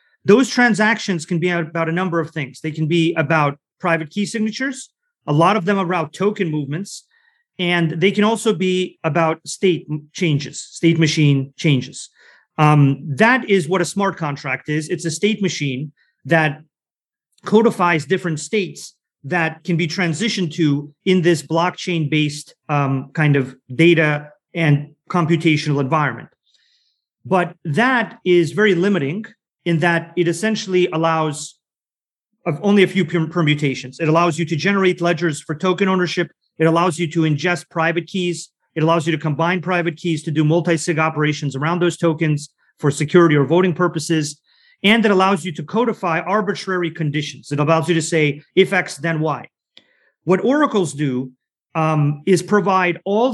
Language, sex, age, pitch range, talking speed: English, male, 30-49, 155-185 Hz, 155 wpm